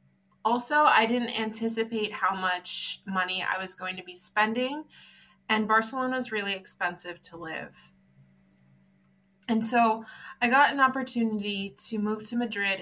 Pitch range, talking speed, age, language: 185-235 Hz, 140 wpm, 20-39, English